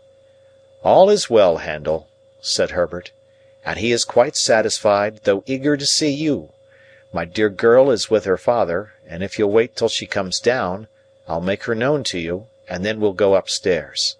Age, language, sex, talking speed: 50-69, English, male, 175 wpm